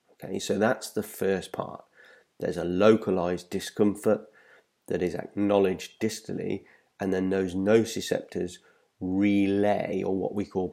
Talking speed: 130 wpm